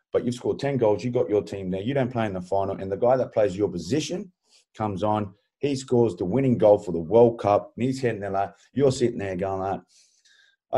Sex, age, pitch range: male, 30-49, 100-120 Hz